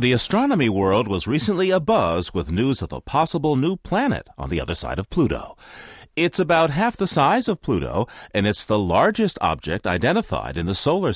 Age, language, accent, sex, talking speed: 40-59, English, American, male, 190 wpm